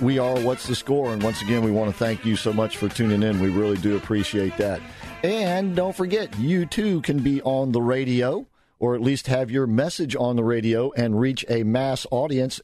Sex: male